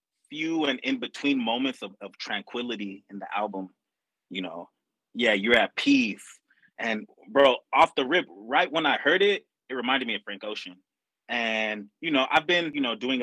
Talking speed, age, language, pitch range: 185 wpm, 30-49, English, 105-145 Hz